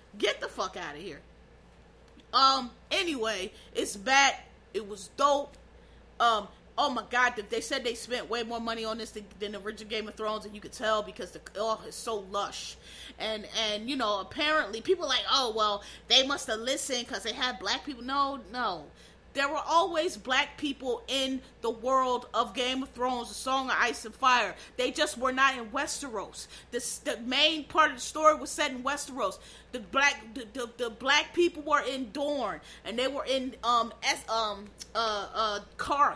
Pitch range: 230-290 Hz